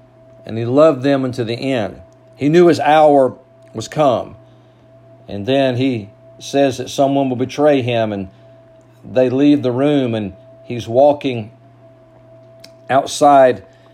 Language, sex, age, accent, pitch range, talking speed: English, male, 50-69, American, 125-145 Hz, 135 wpm